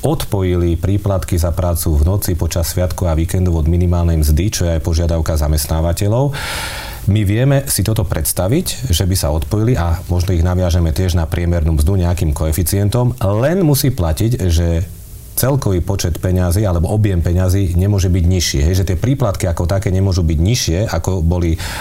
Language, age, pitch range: Slovak, 40-59, 85-100 Hz